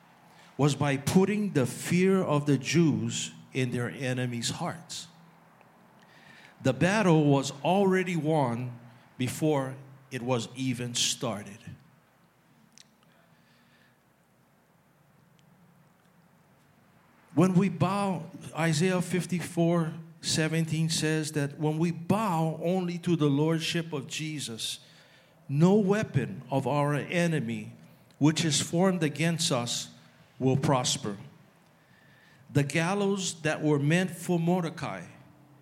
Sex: male